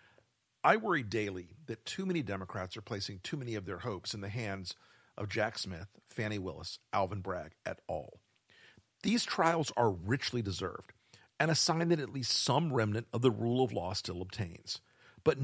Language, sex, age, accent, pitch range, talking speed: English, male, 50-69, American, 100-130 Hz, 185 wpm